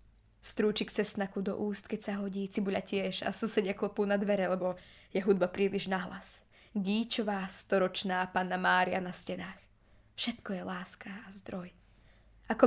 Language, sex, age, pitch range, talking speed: Slovak, female, 20-39, 150-205 Hz, 150 wpm